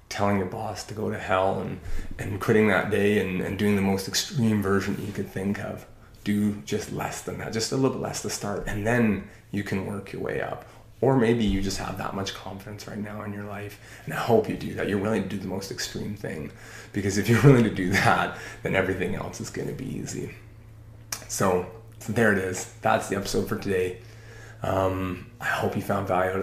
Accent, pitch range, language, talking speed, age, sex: American, 95-110 Hz, English, 230 wpm, 20-39, male